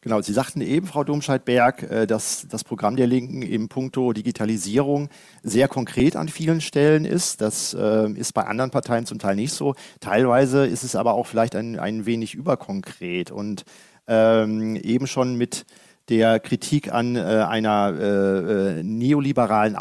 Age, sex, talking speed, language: 40-59, male, 150 wpm, German